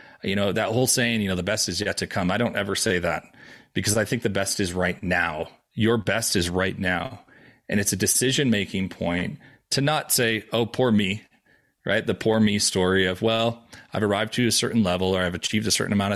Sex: male